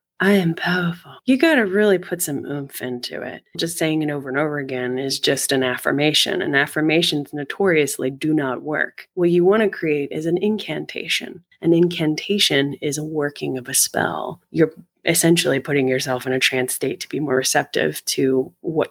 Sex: female